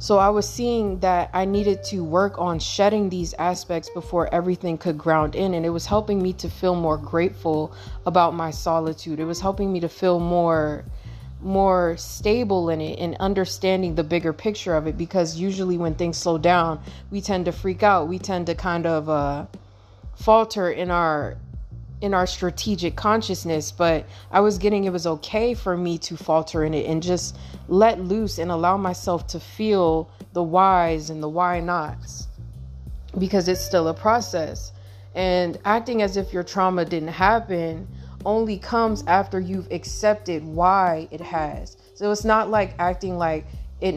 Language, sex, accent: English, female, American